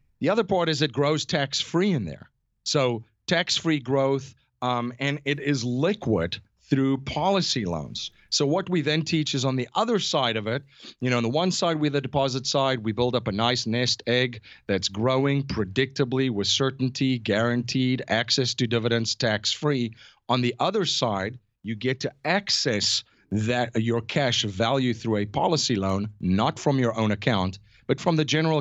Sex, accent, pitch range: male, American, 105-140 Hz